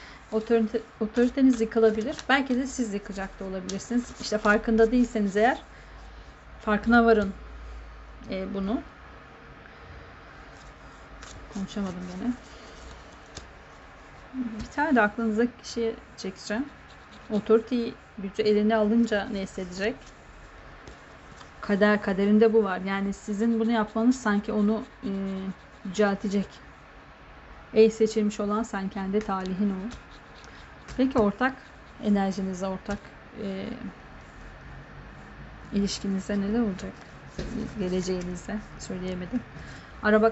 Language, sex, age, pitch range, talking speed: Turkish, female, 40-59, 195-230 Hz, 90 wpm